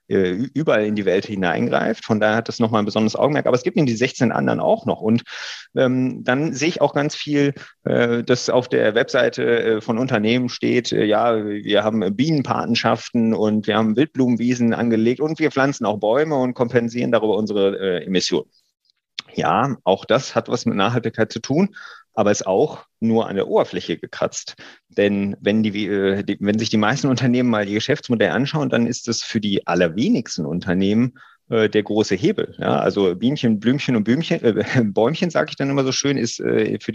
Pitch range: 105-130 Hz